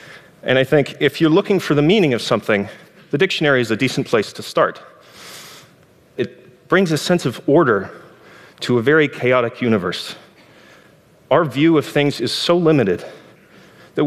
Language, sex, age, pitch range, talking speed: French, male, 30-49, 115-150 Hz, 160 wpm